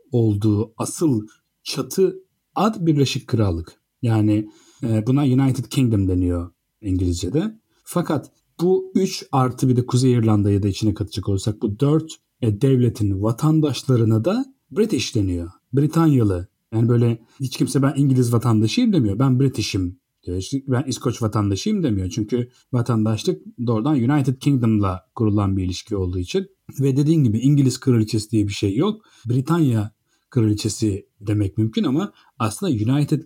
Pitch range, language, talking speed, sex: 105-140 Hz, Turkish, 130 wpm, male